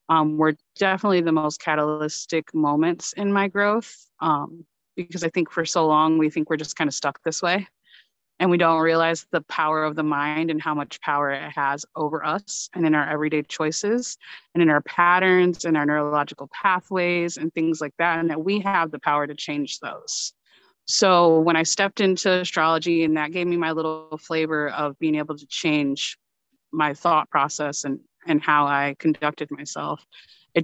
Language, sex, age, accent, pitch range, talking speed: English, female, 30-49, American, 150-170 Hz, 190 wpm